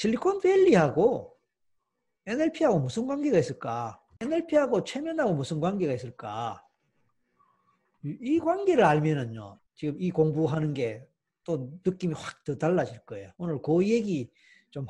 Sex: male